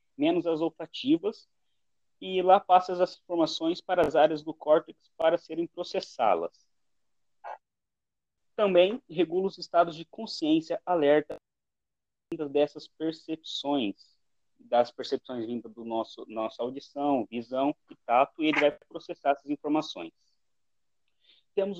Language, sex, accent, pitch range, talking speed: Portuguese, male, Brazilian, 145-200 Hz, 115 wpm